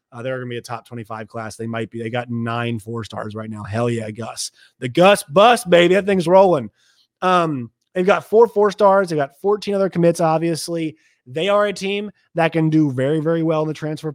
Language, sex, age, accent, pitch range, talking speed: English, male, 30-49, American, 125-170 Hz, 220 wpm